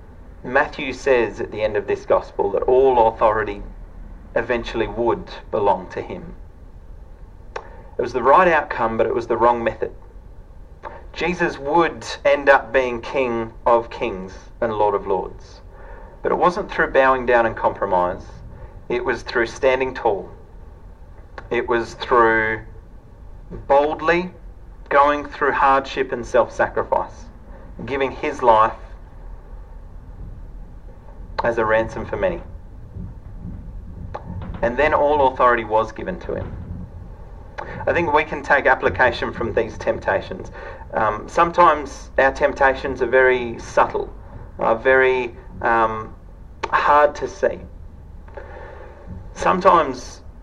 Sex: male